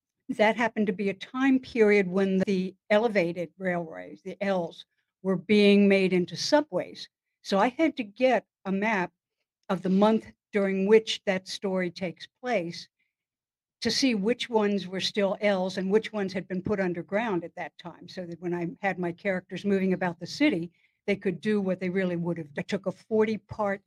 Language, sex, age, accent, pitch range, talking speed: English, female, 60-79, American, 180-215 Hz, 185 wpm